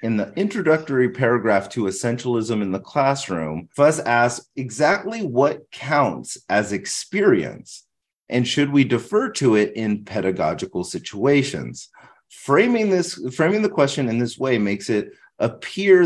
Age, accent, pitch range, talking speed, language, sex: 30-49, American, 95-140 Hz, 135 wpm, English, male